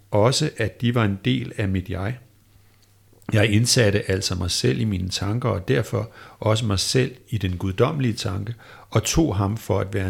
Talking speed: 190 wpm